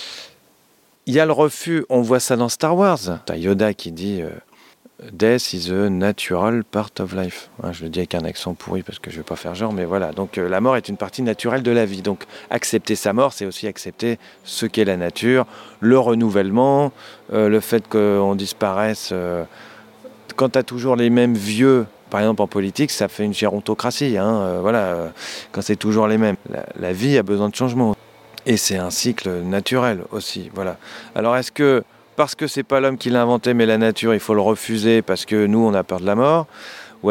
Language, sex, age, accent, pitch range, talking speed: French, male, 40-59, French, 100-120 Hz, 220 wpm